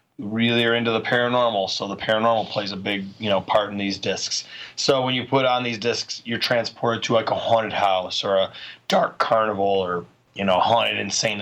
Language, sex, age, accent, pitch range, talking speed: English, male, 30-49, American, 100-115 Hz, 210 wpm